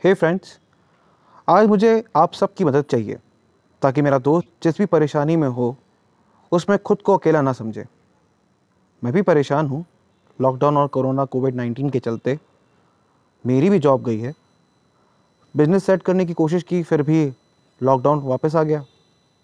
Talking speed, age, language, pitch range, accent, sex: 160 wpm, 30-49, Hindi, 130-170 Hz, native, male